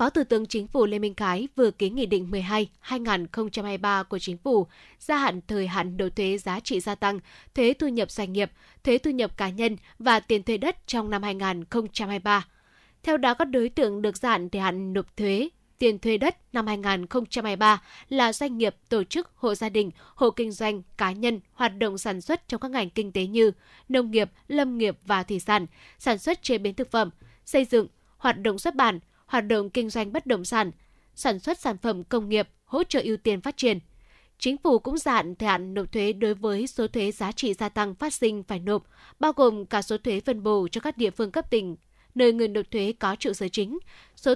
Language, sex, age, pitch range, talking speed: Vietnamese, female, 10-29, 200-245 Hz, 220 wpm